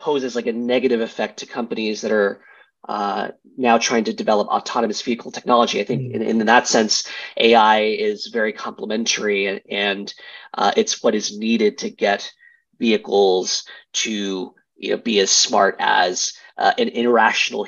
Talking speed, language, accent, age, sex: 155 wpm, English, American, 20-39, male